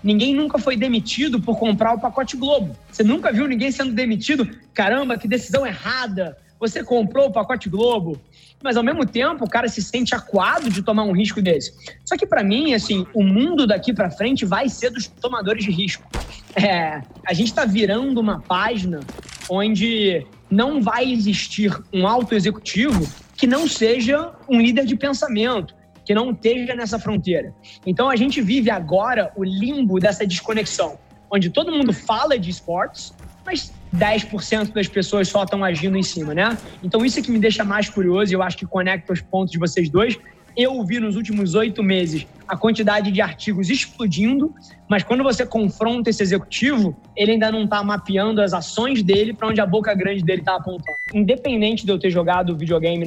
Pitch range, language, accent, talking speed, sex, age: 190-240 Hz, Portuguese, Brazilian, 185 wpm, male, 20-39